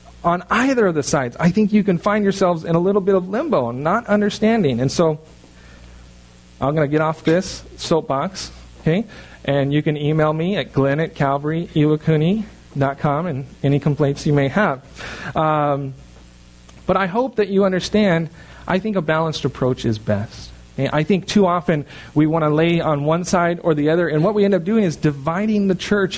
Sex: male